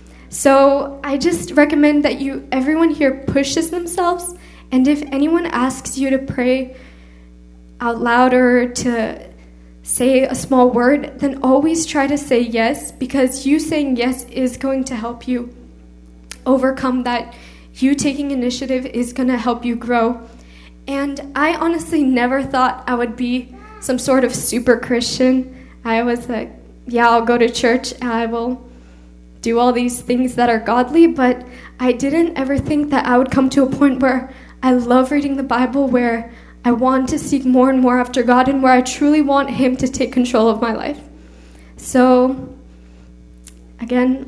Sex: female